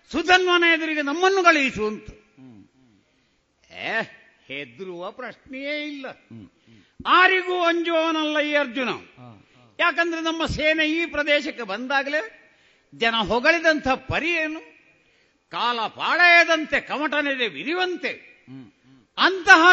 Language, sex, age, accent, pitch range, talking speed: Kannada, male, 60-79, native, 215-320 Hz, 75 wpm